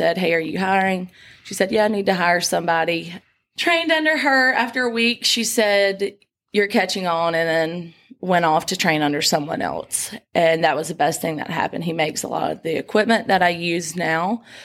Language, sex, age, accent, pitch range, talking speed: English, female, 30-49, American, 165-195 Hz, 210 wpm